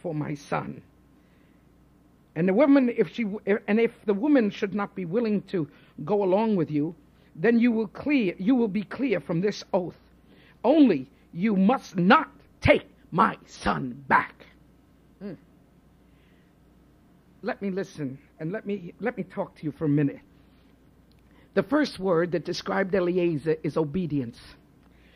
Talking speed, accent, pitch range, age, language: 150 wpm, American, 175-240 Hz, 60-79, English